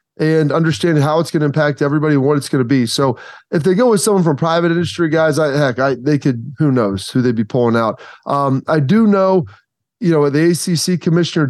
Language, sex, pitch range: English, male, 145-170 Hz